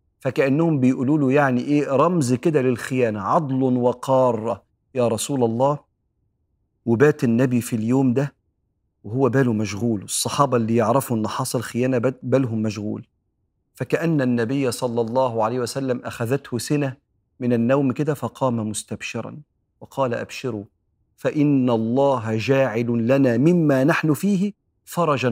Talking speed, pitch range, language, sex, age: 120 wpm, 115-145 Hz, Arabic, male, 40-59